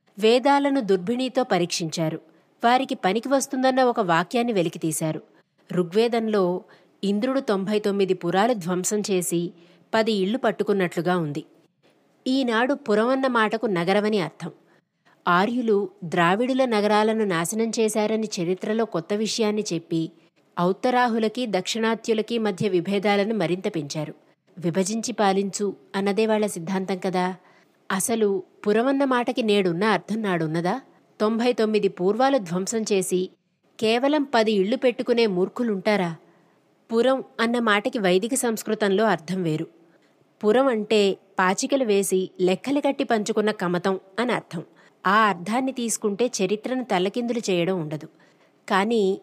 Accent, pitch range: native, 185-230 Hz